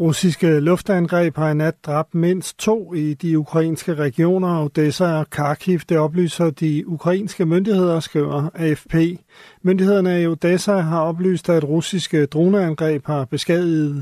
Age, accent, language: 40-59, native, Danish